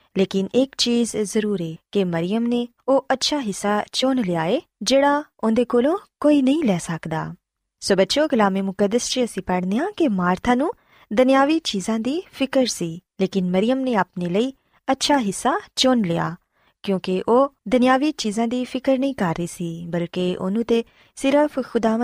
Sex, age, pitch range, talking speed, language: female, 20-39, 185-255 Hz, 115 wpm, Punjabi